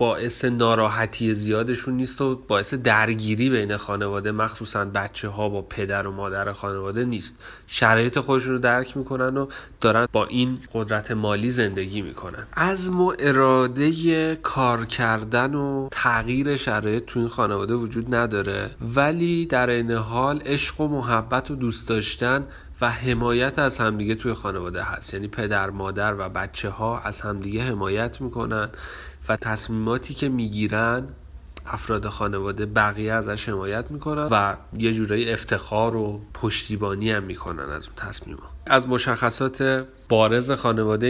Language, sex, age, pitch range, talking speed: Persian, male, 30-49, 105-125 Hz, 140 wpm